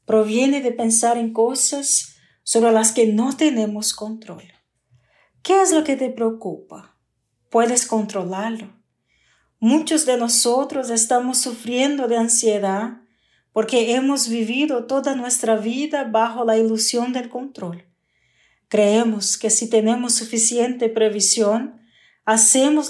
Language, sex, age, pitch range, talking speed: Spanish, female, 40-59, 220-255 Hz, 115 wpm